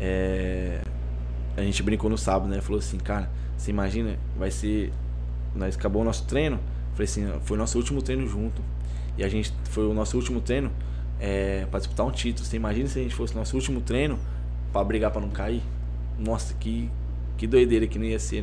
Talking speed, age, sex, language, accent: 205 wpm, 20-39, male, Portuguese, Brazilian